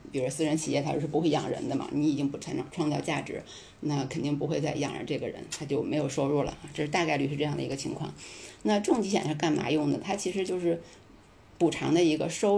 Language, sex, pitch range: Chinese, female, 150-180 Hz